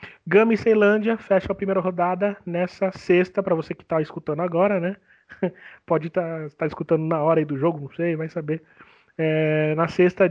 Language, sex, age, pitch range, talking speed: Portuguese, male, 20-39, 160-205 Hz, 190 wpm